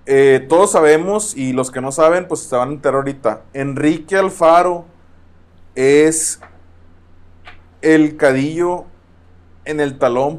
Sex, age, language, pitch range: male, 30-49, Spanish, 95-155 Hz